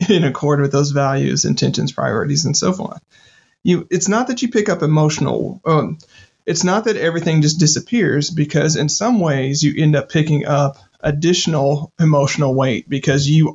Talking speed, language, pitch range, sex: 170 wpm, English, 135-160 Hz, male